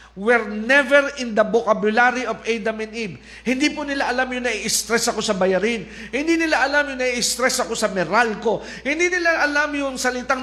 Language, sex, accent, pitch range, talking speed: Filipino, male, native, 225-275 Hz, 185 wpm